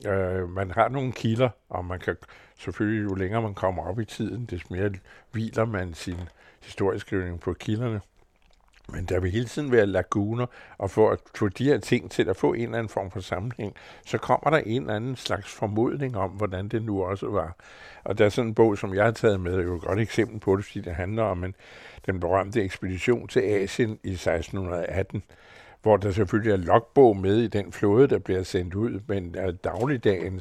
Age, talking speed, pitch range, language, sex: 60-79, 210 wpm, 95-110 Hz, Danish, male